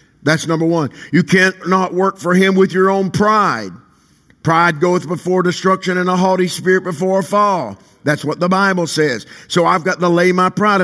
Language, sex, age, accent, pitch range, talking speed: English, male, 50-69, American, 160-195 Hz, 200 wpm